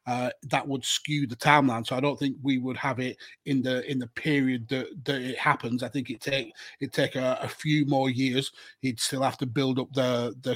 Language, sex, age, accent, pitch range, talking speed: English, male, 30-49, British, 125-140 Hz, 240 wpm